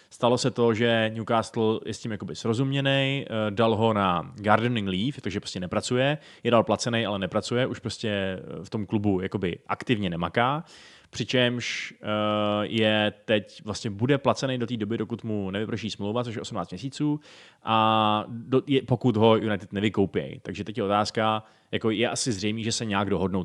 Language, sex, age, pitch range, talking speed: Czech, male, 20-39, 100-120 Hz, 165 wpm